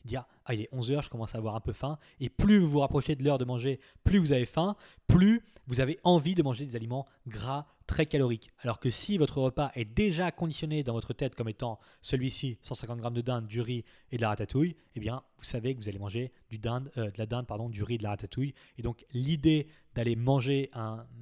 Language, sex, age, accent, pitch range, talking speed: French, male, 20-39, French, 115-145 Hz, 245 wpm